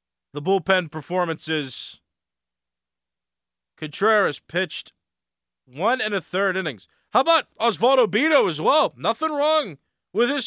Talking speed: 115 wpm